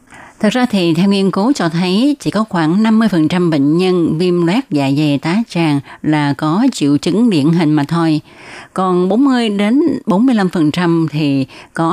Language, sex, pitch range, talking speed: Vietnamese, female, 150-195 Hz, 190 wpm